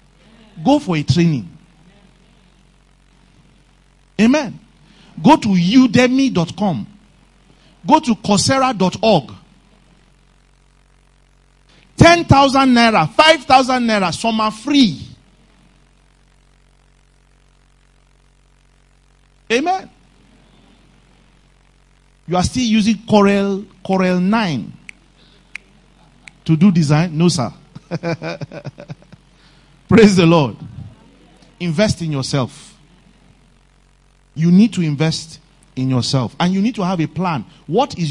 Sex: male